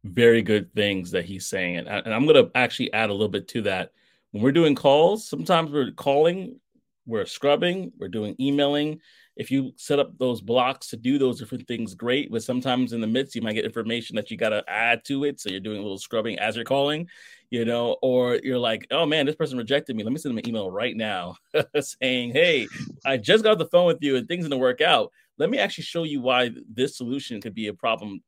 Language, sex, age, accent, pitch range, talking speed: English, male, 30-49, American, 115-140 Hz, 240 wpm